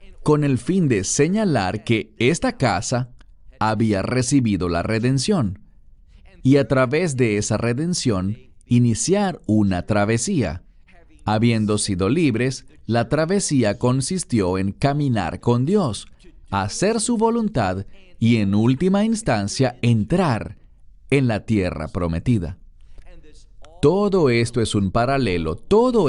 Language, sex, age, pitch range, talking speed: English, male, 40-59, 95-140 Hz, 115 wpm